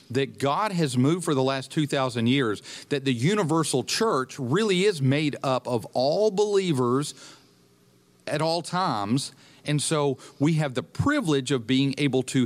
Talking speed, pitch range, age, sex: 160 wpm, 120-145 Hz, 40-59, male